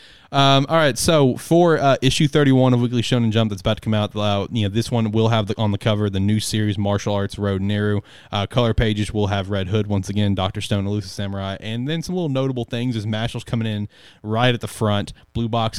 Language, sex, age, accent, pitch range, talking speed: English, male, 20-39, American, 100-125 Hz, 245 wpm